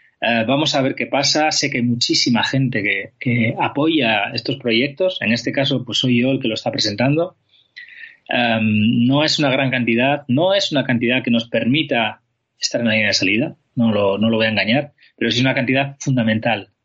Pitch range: 115-140 Hz